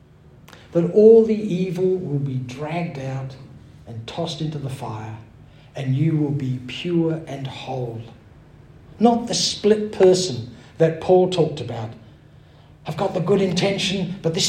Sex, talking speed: male, 145 wpm